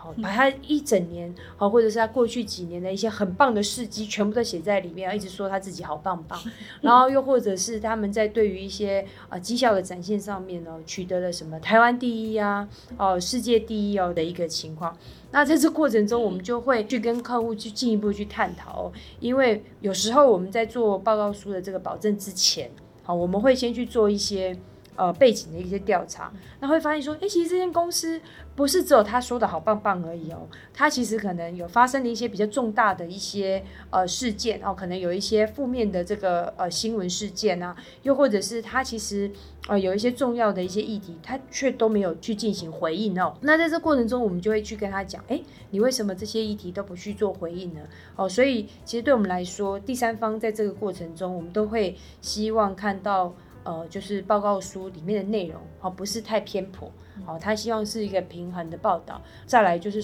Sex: female